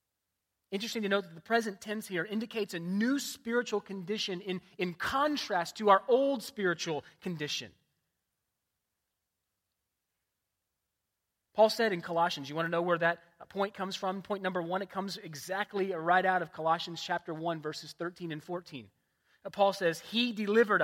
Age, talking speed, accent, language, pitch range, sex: 30-49, 155 wpm, American, English, 150-200 Hz, male